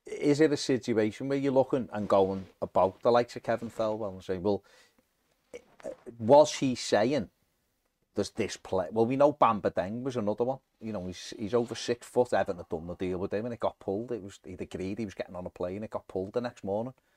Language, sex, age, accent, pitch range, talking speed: English, male, 30-49, British, 95-135 Hz, 230 wpm